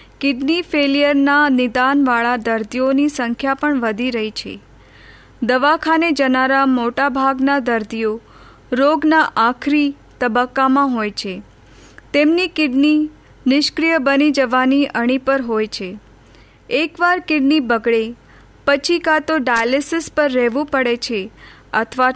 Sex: female